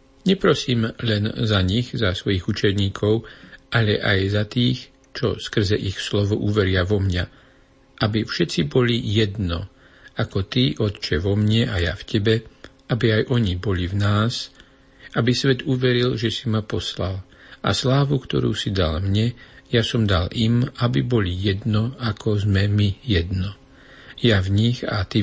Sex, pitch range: male, 100-120 Hz